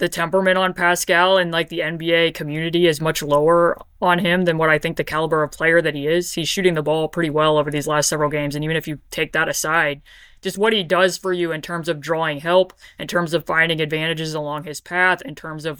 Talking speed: 245 wpm